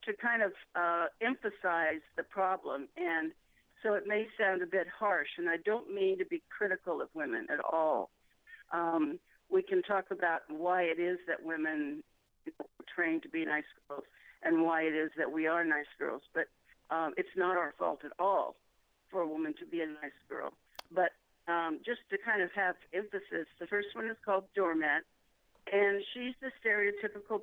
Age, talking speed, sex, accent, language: 50-69, 185 wpm, female, American, English